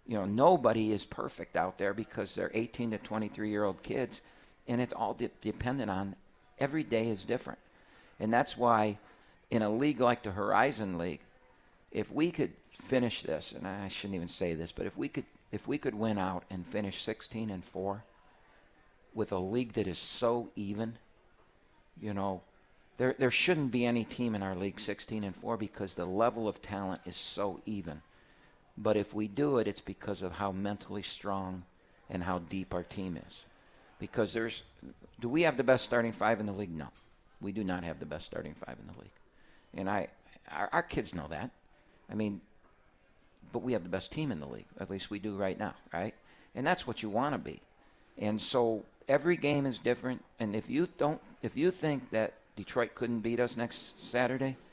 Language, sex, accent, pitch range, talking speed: English, male, American, 95-120 Hz, 200 wpm